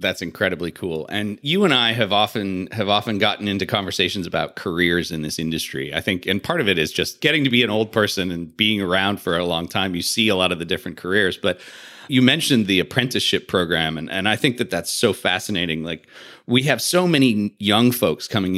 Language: English